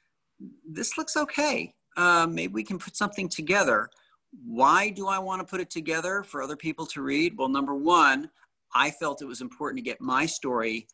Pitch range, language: 115-160 Hz, English